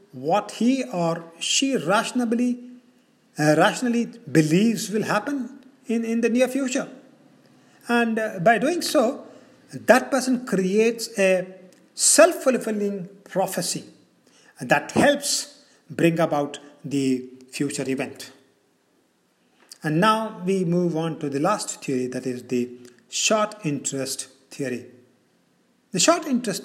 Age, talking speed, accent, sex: 50-69, 115 wpm, Indian, male